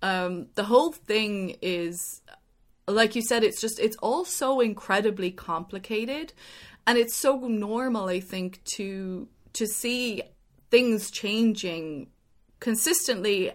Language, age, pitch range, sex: English, 20-39, 185-225 Hz, female